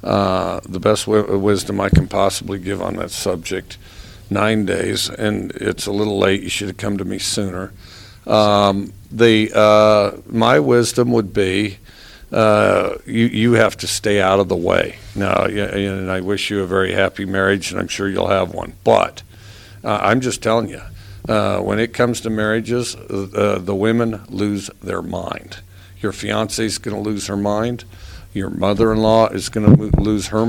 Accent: American